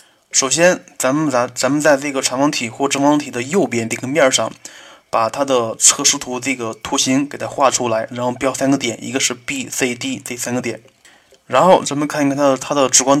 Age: 20-39